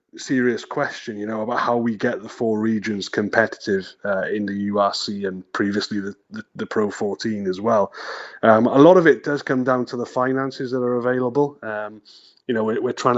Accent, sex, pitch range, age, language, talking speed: British, male, 110-130 Hz, 30-49, English, 205 wpm